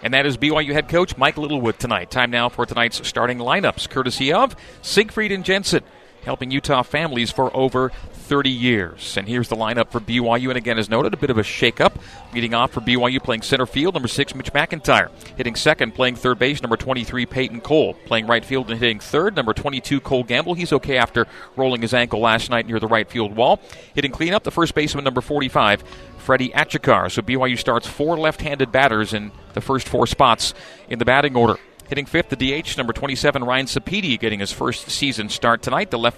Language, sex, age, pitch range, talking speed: English, male, 40-59, 115-140 Hz, 205 wpm